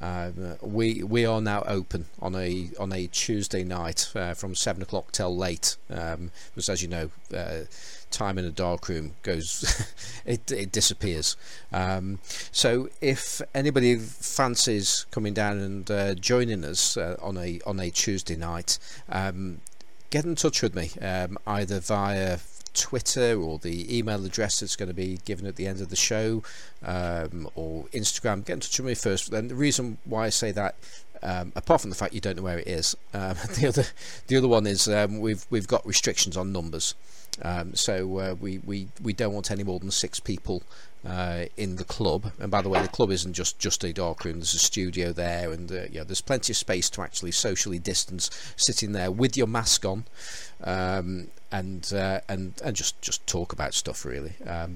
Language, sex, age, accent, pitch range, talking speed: English, male, 40-59, British, 90-110 Hz, 195 wpm